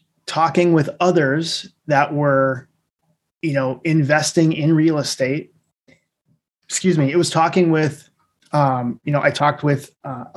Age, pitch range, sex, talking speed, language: 20-39, 140-165 Hz, male, 140 wpm, English